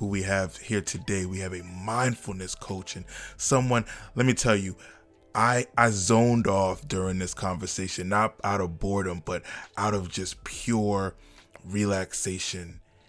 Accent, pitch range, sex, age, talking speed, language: American, 90-110 Hz, male, 20-39, 150 wpm, English